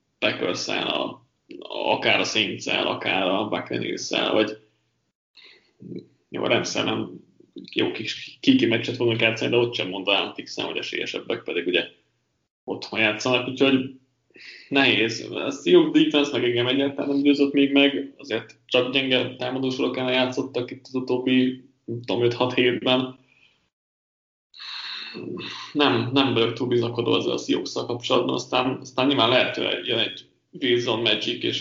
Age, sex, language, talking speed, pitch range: 20-39, male, Hungarian, 130 wpm, 115-135 Hz